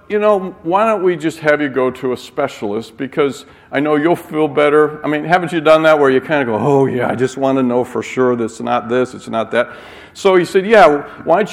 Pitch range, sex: 115-155 Hz, male